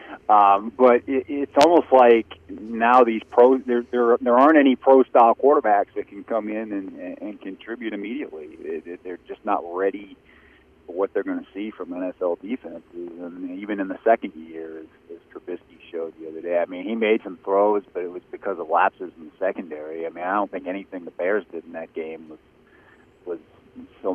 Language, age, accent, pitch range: English, 40-59, American, 95-120 Hz